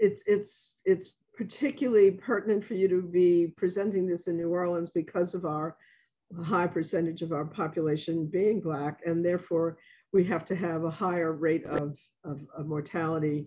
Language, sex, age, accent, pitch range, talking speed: English, female, 50-69, American, 160-195 Hz, 165 wpm